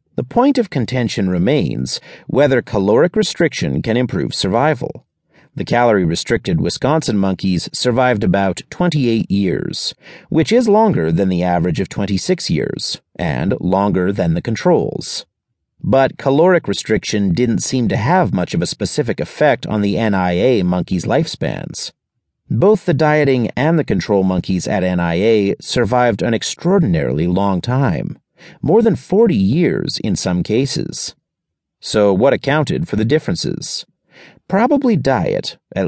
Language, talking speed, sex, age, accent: English, 135 wpm, male, 40-59, American